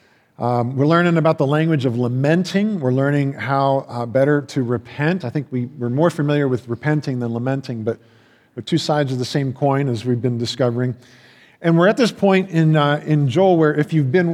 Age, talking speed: 40-59, 210 wpm